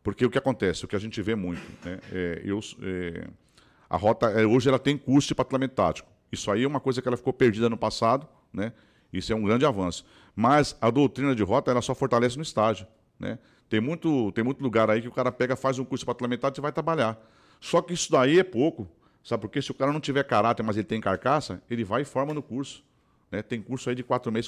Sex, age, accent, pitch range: male, 40-59, Brazilian, 110-145 Hz